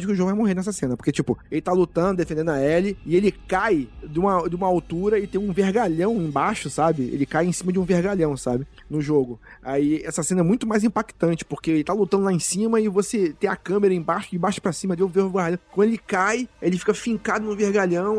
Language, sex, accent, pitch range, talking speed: Portuguese, male, Brazilian, 155-195 Hz, 245 wpm